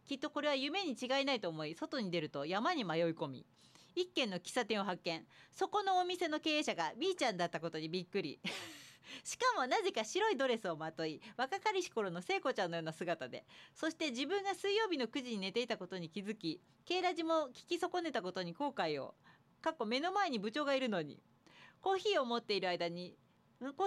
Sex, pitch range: female, 200-320 Hz